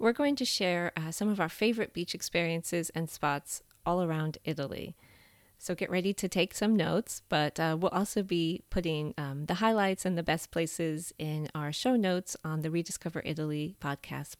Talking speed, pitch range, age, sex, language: 190 wpm, 155-190 Hz, 30-49, female, English